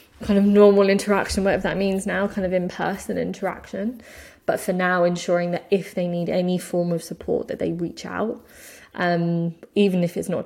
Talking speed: 190 wpm